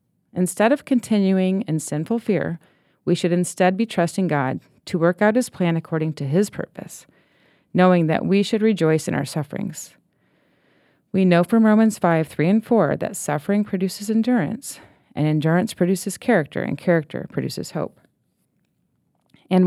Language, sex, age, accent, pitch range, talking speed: English, female, 30-49, American, 160-205 Hz, 155 wpm